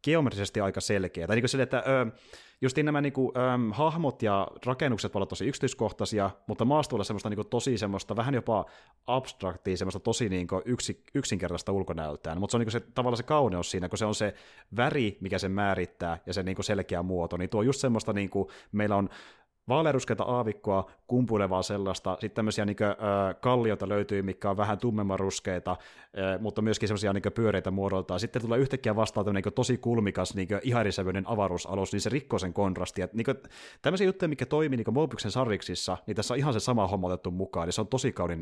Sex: male